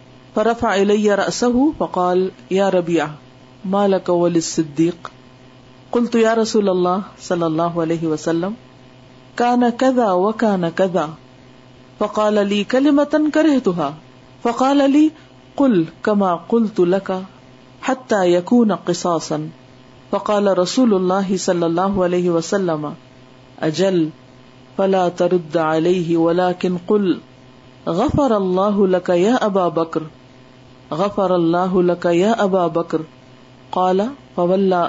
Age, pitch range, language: 50-69, 130-205 Hz, Urdu